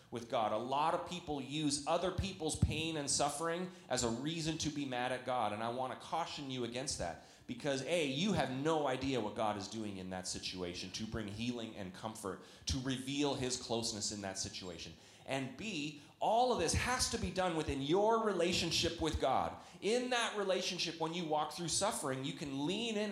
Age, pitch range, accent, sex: 30-49, 110-155 Hz, American, male